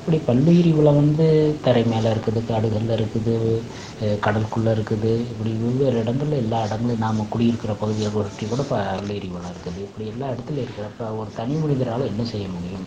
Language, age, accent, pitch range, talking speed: Tamil, 30-49, native, 95-120 Hz, 160 wpm